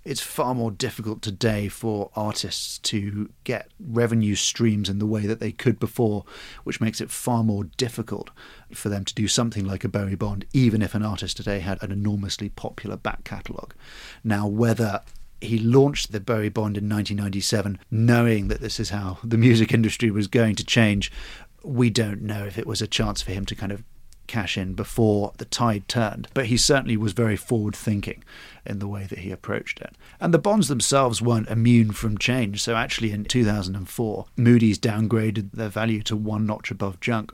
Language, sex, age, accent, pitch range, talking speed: English, male, 40-59, British, 105-115 Hz, 190 wpm